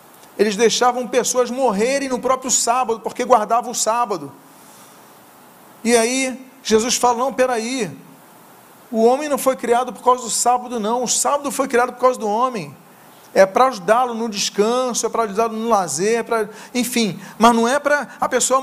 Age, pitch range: 40-59, 200-250 Hz